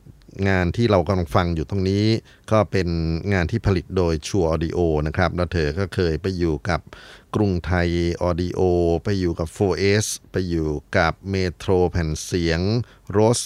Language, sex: Thai, male